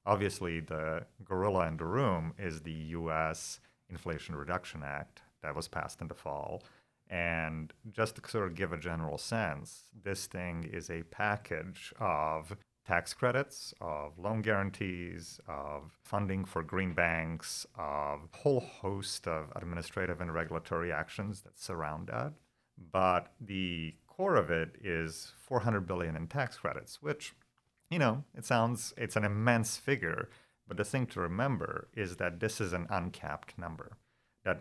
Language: English